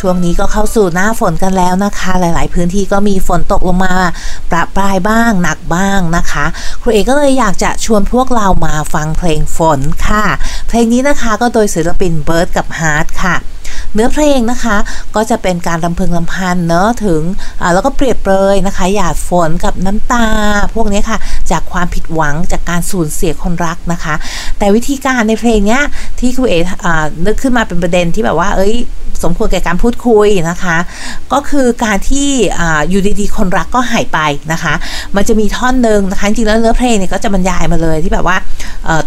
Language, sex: Thai, female